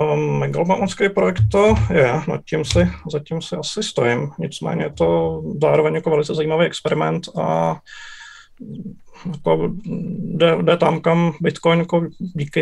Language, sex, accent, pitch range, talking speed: Czech, male, native, 150-175 Hz, 130 wpm